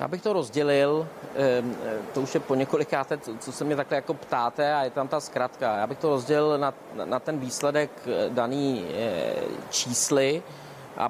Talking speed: 155 wpm